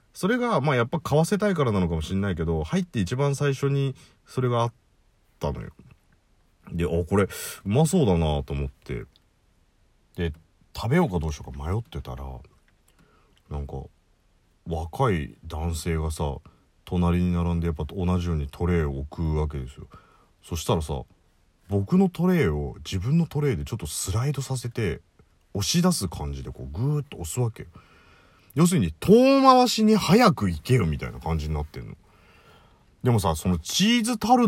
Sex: male